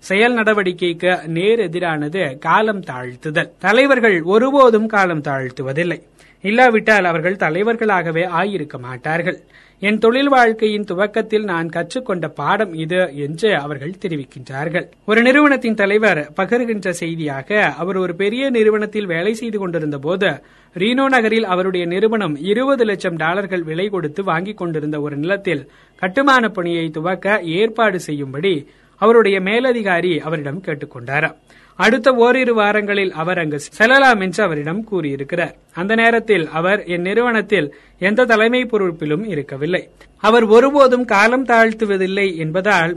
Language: Tamil